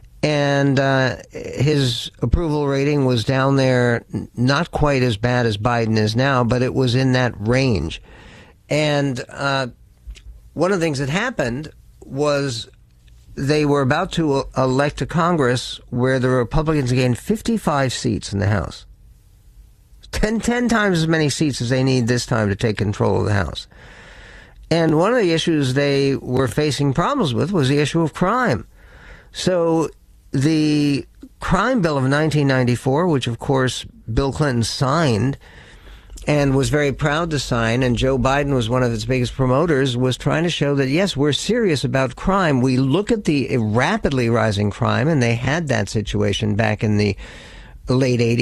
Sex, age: male, 60-79